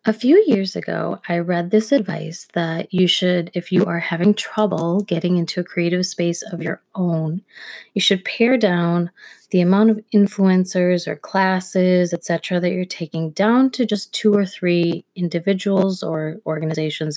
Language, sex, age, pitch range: English, female, 20-39, 170-210 Hz